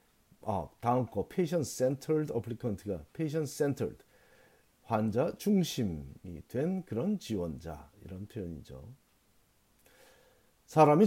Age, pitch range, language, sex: 40-59, 100-155 Hz, Korean, male